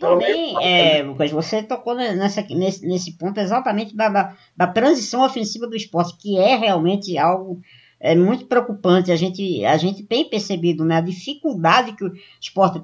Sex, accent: male, Brazilian